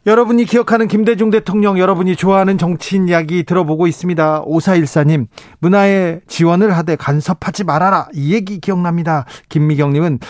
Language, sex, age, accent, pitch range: Korean, male, 40-59, native, 130-170 Hz